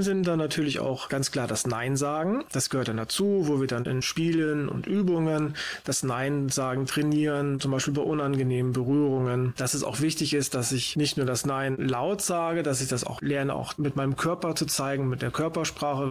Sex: male